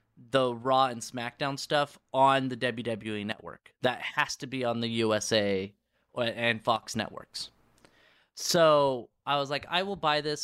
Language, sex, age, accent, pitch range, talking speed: English, male, 30-49, American, 130-185 Hz, 155 wpm